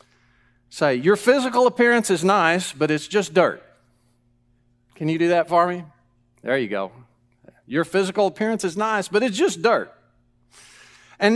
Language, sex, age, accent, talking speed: English, male, 50-69, American, 155 wpm